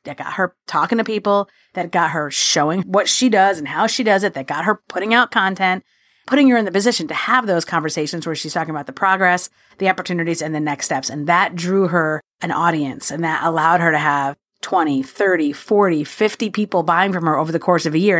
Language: English